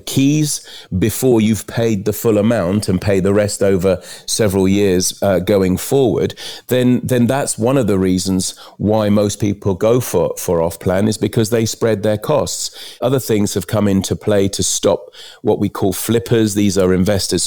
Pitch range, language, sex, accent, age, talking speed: 100-120 Hz, English, male, British, 40-59, 180 wpm